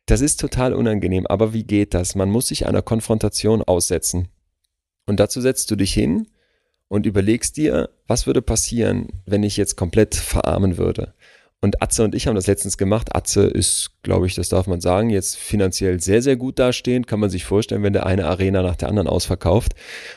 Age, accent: 30-49, German